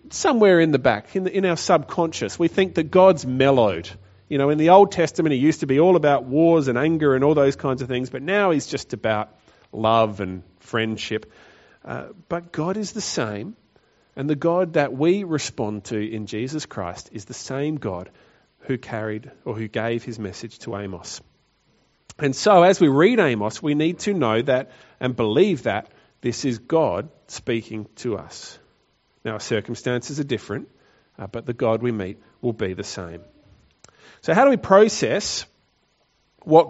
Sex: male